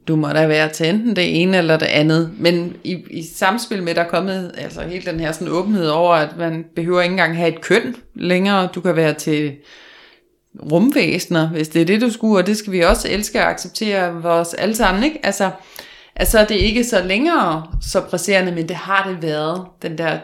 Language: Danish